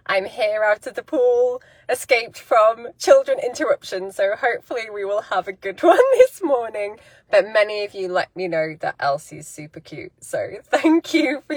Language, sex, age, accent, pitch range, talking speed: English, female, 20-39, British, 175-290 Hz, 180 wpm